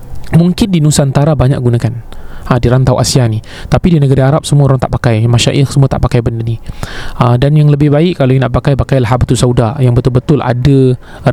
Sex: male